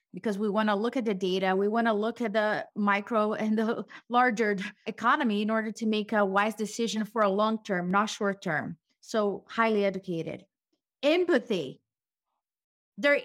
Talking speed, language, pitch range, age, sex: 165 wpm, English, 210-260 Hz, 30-49, female